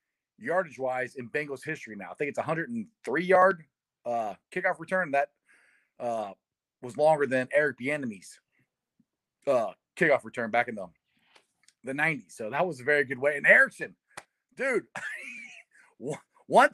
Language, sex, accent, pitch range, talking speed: English, male, American, 135-200 Hz, 145 wpm